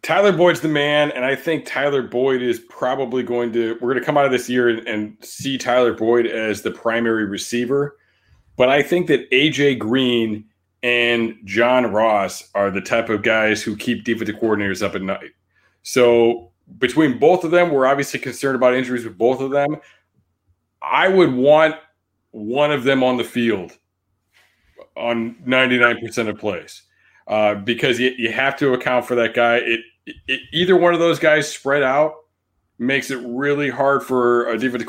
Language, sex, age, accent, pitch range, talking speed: English, male, 30-49, American, 110-135 Hz, 175 wpm